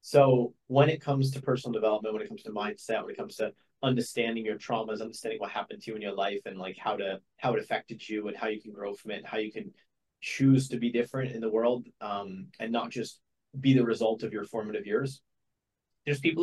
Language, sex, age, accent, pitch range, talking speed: English, male, 30-49, American, 110-135 Hz, 240 wpm